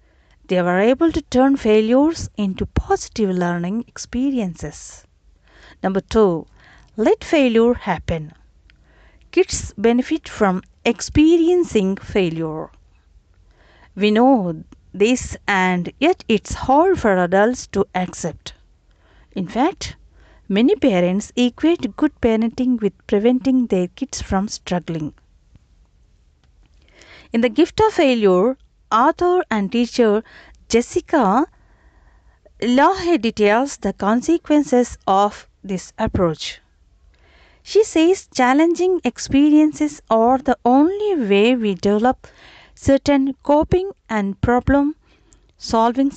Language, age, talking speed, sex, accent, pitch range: Telugu, 50-69, 95 wpm, female, native, 190-280 Hz